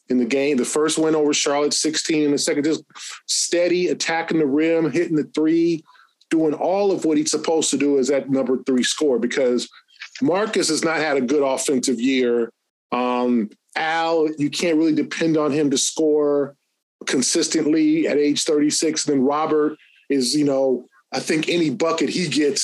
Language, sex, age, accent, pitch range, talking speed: English, male, 20-39, American, 135-160 Hz, 180 wpm